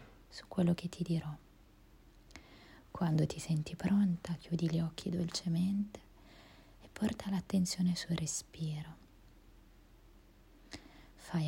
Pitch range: 160-185 Hz